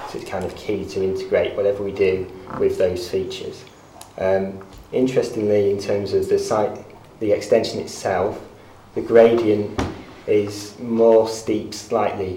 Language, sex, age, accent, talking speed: English, male, 20-39, British, 140 wpm